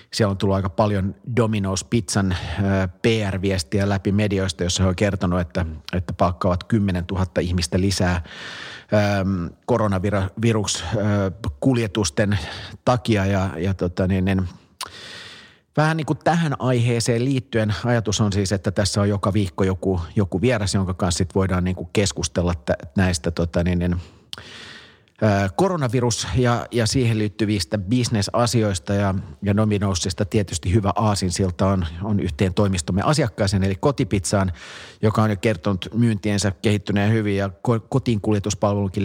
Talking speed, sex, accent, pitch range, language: 135 wpm, male, native, 95-110 Hz, Finnish